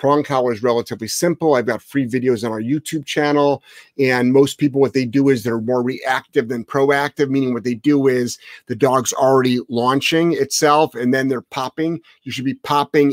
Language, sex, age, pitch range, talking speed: English, male, 30-49, 125-150 Hz, 195 wpm